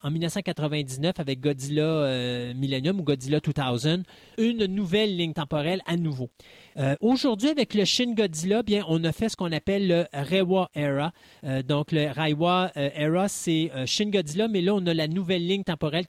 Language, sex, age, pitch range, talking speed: French, male, 30-49, 140-185 Hz, 185 wpm